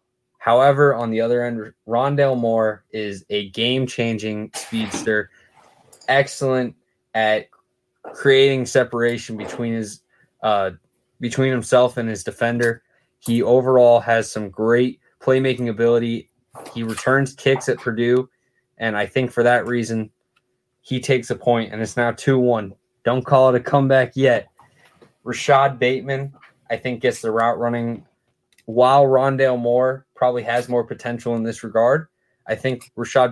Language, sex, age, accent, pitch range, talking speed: English, male, 20-39, American, 110-130 Hz, 135 wpm